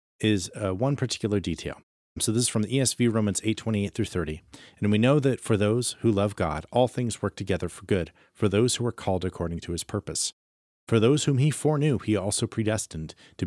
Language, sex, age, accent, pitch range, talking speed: English, male, 40-59, American, 85-115 Hz, 215 wpm